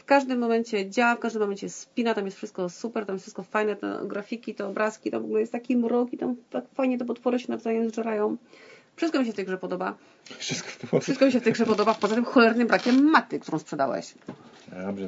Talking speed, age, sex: 225 wpm, 30-49, female